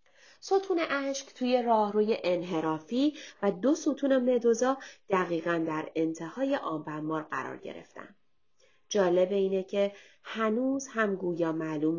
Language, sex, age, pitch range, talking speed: Persian, female, 30-49, 160-245 Hz, 115 wpm